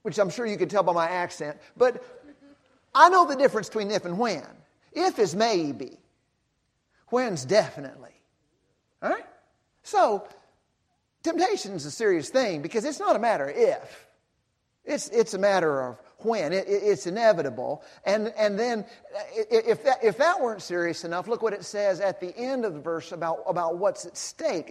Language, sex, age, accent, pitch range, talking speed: English, male, 50-69, American, 170-245 Hz, 175 wpm